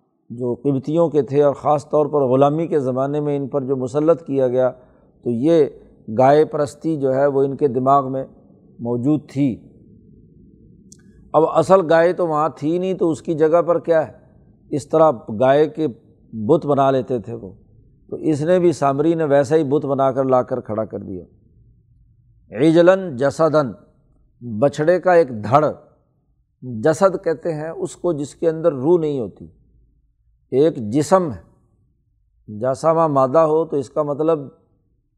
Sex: male